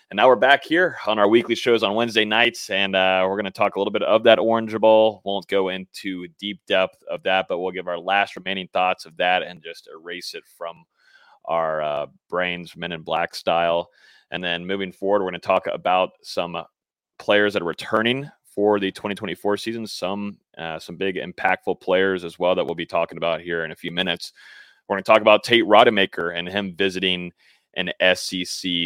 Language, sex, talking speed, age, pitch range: English, male, 210 wpm, 30-49, 90-110 Hz